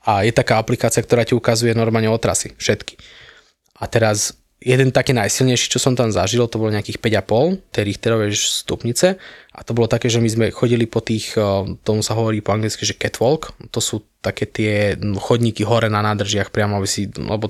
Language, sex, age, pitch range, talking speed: Slovak, male, 20-39, 105-125 Hz, 190 wpm